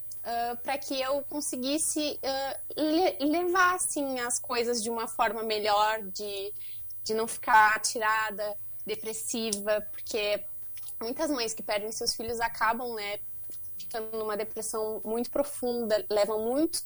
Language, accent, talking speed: Portuguese, Brazilian, 130 wpm